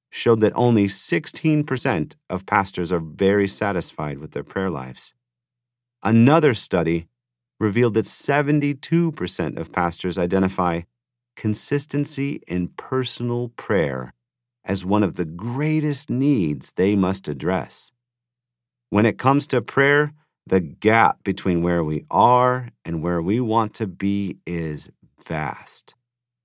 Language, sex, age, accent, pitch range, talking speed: English, male, 40-59, American, 95-135 Hz, 120 wpm